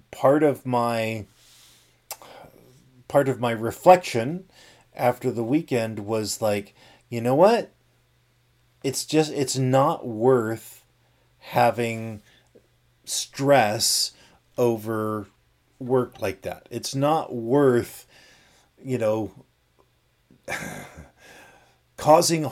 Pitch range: 115-135 Hz